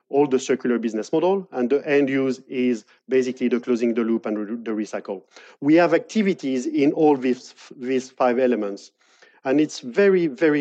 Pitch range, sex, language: 125-150 Hz, male, English